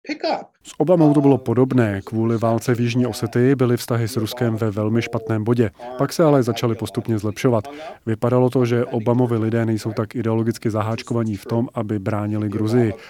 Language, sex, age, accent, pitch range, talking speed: Czech, male, 30-49, native, 110-125 Hz, 175 wpm